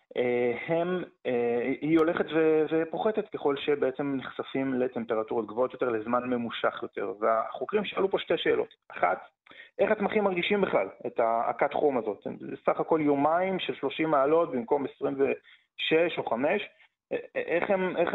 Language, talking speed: Hebrew, 135 wpm